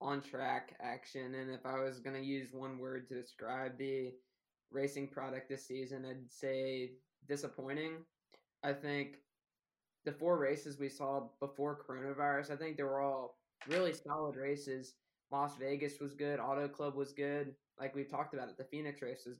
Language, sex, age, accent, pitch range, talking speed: English, male, 10-29, American, 135-145 Hz, 175 wpm